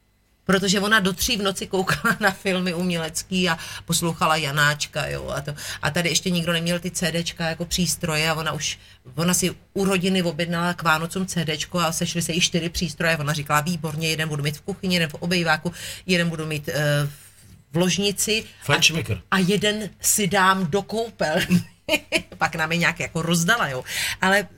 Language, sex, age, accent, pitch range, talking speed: Czech, female, 40-59, native, 155-195 Hz, 180 wpm